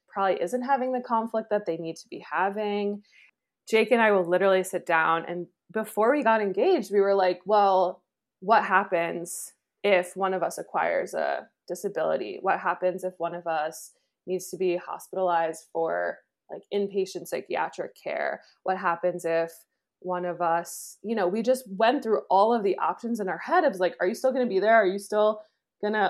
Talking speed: 195 wpm